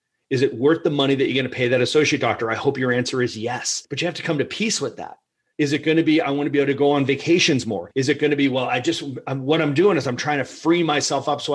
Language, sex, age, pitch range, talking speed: English, male, 30-49, 125-160 Hz, 320 wpm